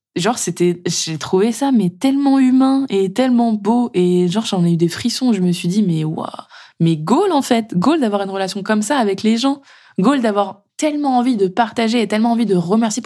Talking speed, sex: 220 wpm, female